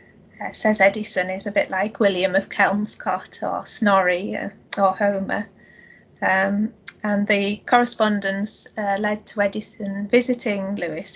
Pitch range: 195-215 Hz